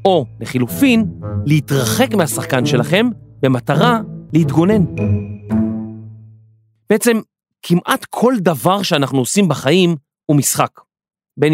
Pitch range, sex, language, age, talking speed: 135-195 Hz, male, Hebrew, 30-49, 90 wpm